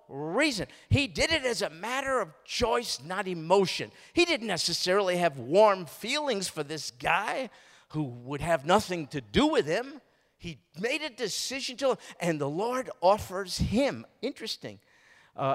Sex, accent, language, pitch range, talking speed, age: male, American, English, 150-230 Hz, 155 wpm, 50-69